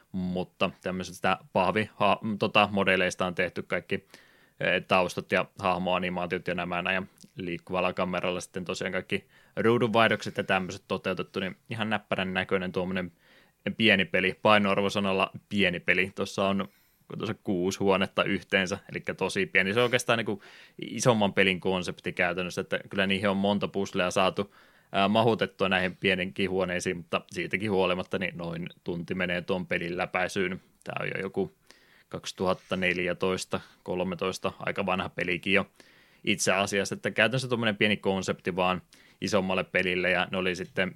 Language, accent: Finnish, native